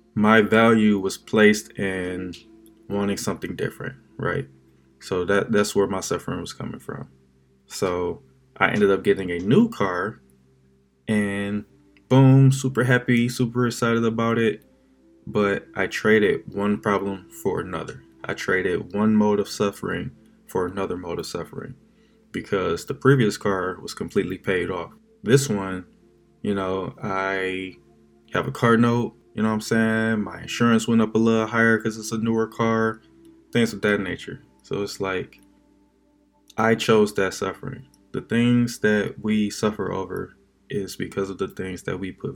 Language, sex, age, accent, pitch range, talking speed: English, male, 20-39, American, 95-115 Hz, 155 wpm